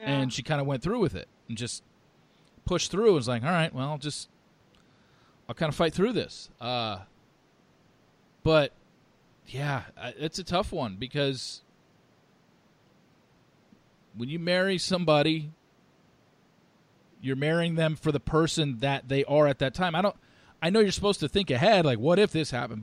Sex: male